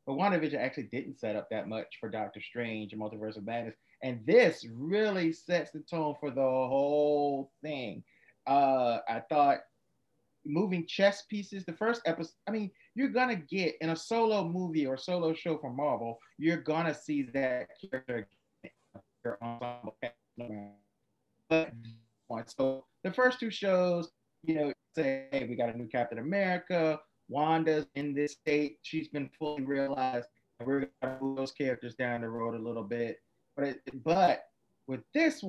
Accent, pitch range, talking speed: American, 130-175 Hz, 160 wpm